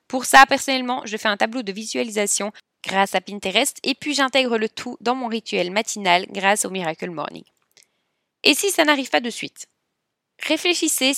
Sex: female